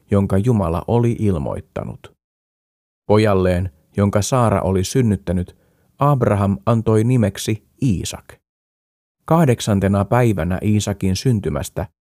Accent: native